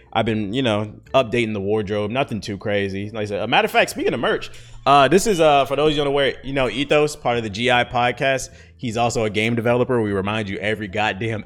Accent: American